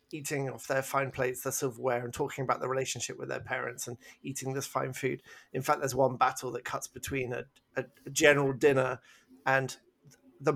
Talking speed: 200 wpm